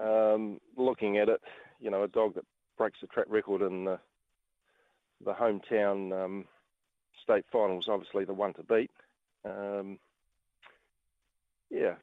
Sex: male